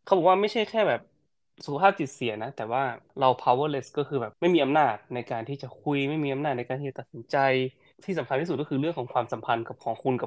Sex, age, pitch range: male, 20-39, 120-145 Hz